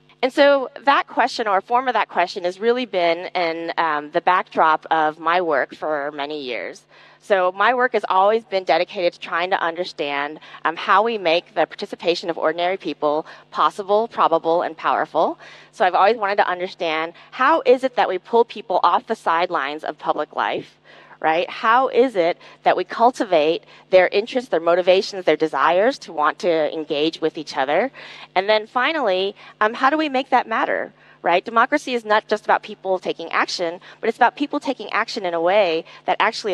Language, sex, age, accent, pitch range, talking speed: English, female, 30-49, American, 170-225 Hz, 190 wpm